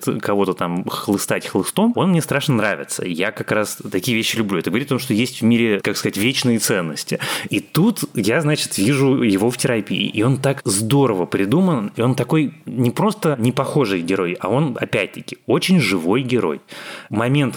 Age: 20-39